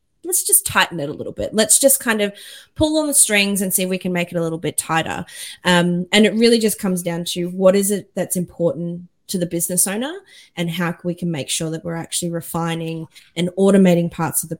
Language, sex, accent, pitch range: English, female, Australian, 165-200 Hz